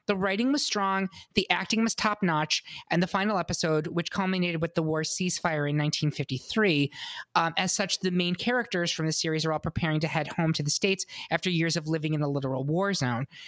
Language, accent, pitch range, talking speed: English, American, 155-195 Hz, 215 wpm